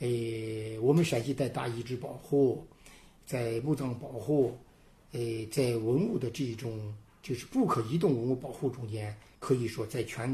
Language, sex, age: Chinese, male, 50-69